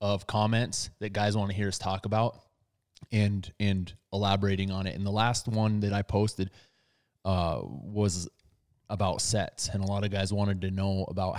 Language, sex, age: English, male, 20-39